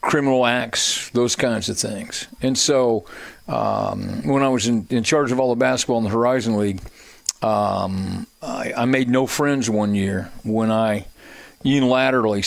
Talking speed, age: 165 wpm, 50-69